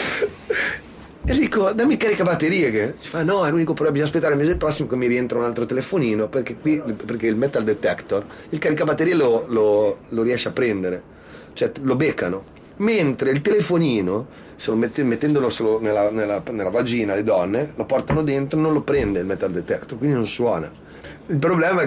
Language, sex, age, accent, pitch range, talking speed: Italian, male, 30-49, native, 105-150 Hz, 190 wpm